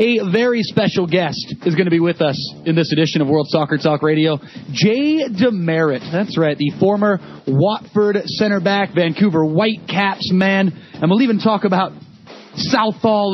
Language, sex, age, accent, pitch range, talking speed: English, male, 30-49, American, 170-215 Hz, 160 wpm